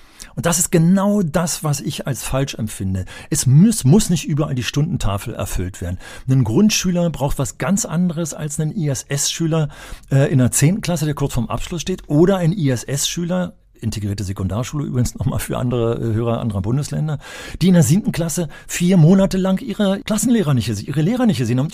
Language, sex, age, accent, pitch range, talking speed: German, male, 40-59, German, 115-170 Hz, 175 wpm